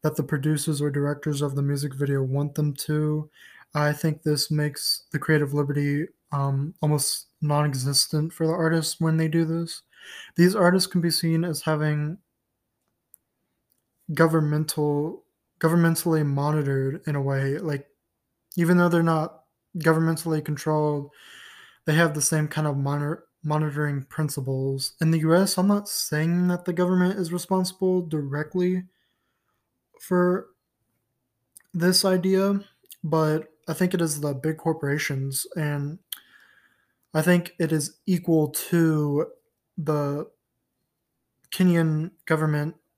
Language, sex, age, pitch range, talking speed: English, male, 20-39, 145-165 Hz, 125 wpm